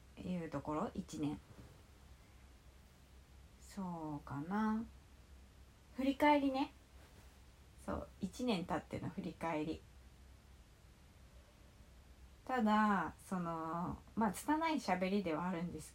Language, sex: Japanese, female